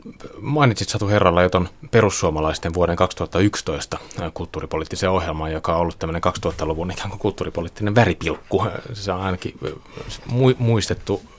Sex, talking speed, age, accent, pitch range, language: male, 105 wpm, 30-49, native, 80-105 Hz, Finnish